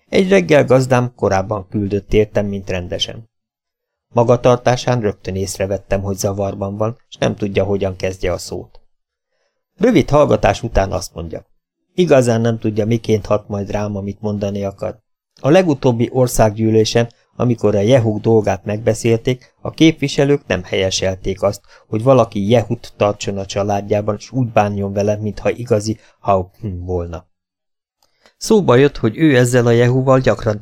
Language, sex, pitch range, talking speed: Hungarian, male, 100-125 Hz, 140 wpm